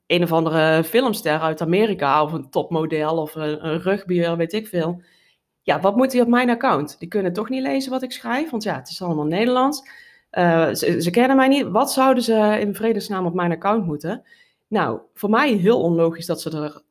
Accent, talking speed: Dutch, 210 wpm